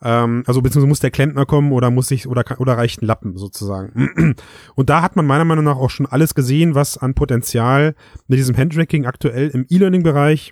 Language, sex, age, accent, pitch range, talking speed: German, male, 30-49, German, 120-150 Hz, 200 wpm